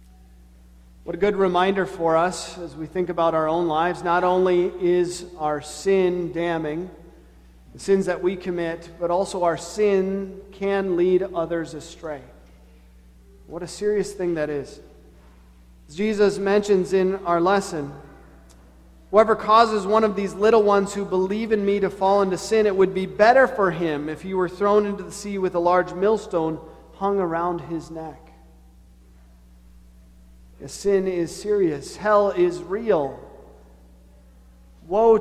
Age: 40-59